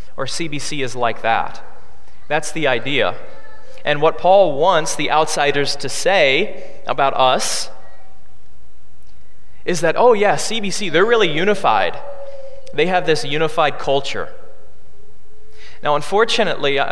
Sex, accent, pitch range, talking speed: male, American, 130-190 Hz, 115 wpm